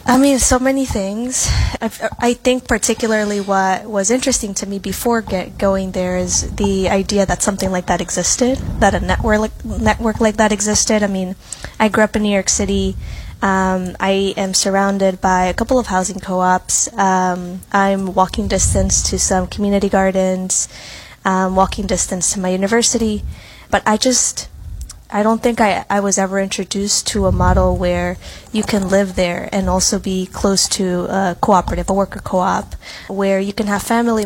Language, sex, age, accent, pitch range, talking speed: English, female, 20-39, American, 180-210 Hz, 175 wpm